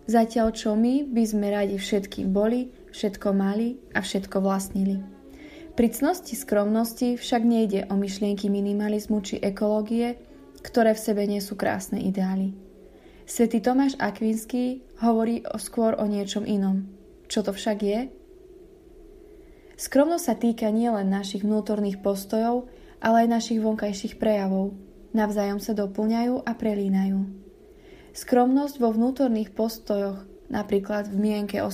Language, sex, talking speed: Slovak, female, 130 wpm